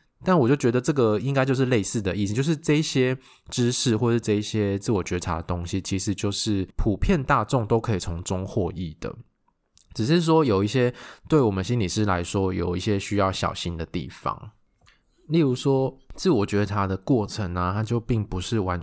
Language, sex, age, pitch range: Chinese, male, 20-39, 95-115 Hz